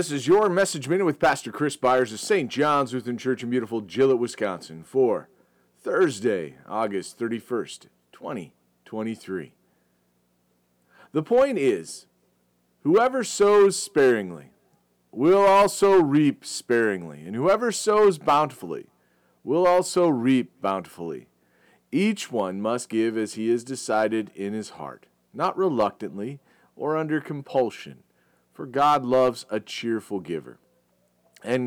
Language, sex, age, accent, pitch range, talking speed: English, male, 40-59, American, 110-150 Hz, 120 wpm